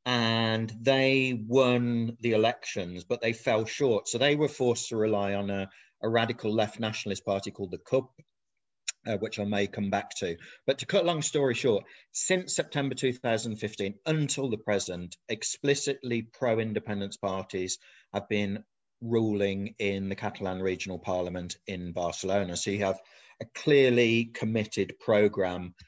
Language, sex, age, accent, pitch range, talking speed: English, male, 40-59, British, 100-120 Hz, 150 wpm